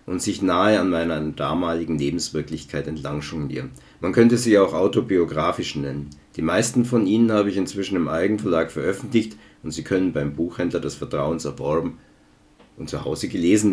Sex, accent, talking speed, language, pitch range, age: male, German, 155 wpm, German, 80-110 Hz, 50-69